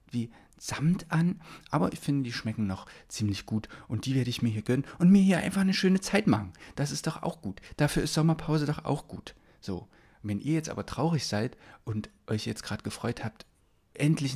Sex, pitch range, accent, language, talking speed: male, 105-135 Hz, German, German, 210 wpm